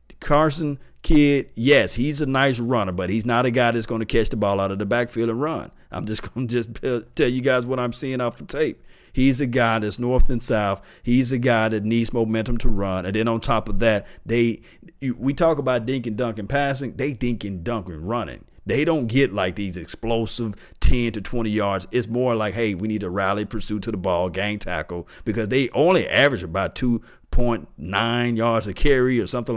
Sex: male